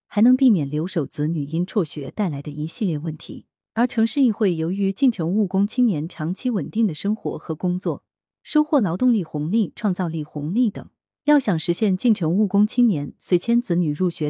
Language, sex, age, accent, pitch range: Chinese, female, 20-39, native, 160-230 Hz